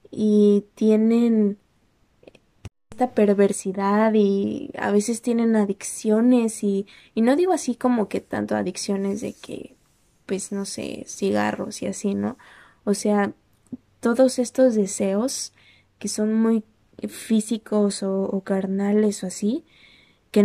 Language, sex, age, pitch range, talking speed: Spanish, female, 20-39, 200-230 Hz, 125 wpm